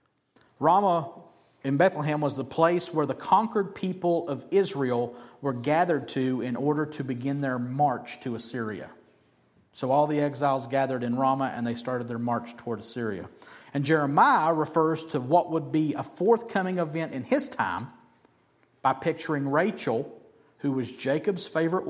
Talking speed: 155 wpm